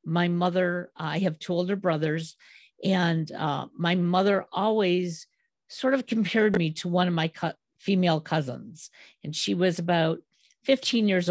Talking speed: 150 wpm